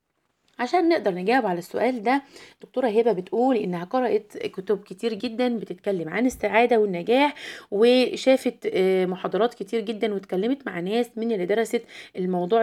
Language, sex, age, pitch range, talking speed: Arabic, female, 20-39, 185-230 Hz, 140 wpm